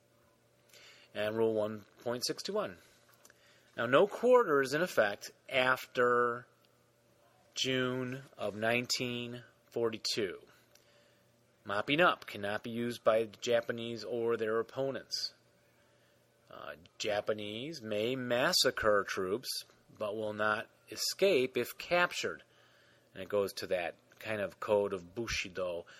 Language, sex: English, male